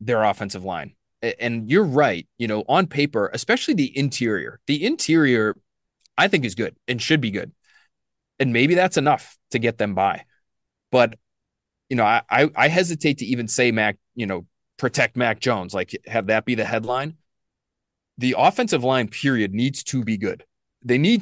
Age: 30-49